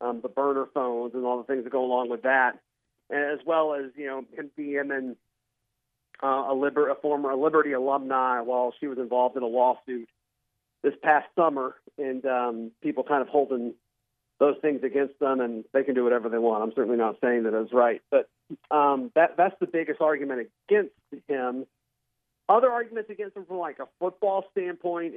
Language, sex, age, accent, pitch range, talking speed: English, male, 40-59, American, 125-160 Hz, 190 wpm